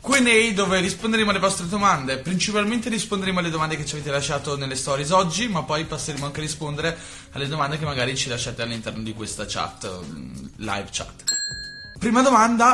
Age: 20-39